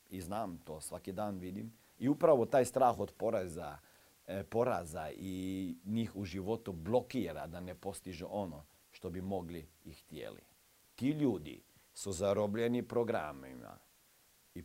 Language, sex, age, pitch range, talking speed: Croatian, male, 50-69, 90-120 Hz, 135 wpm